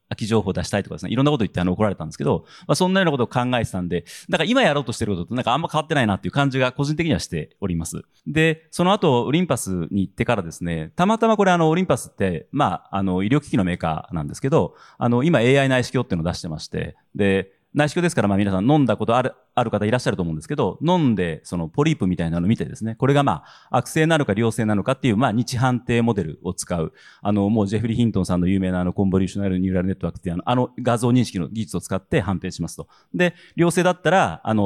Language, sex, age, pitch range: Japanese, male, 30-49, 95-145 Hz